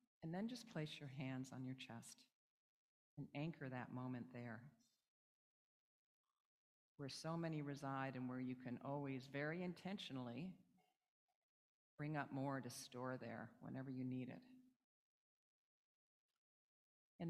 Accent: American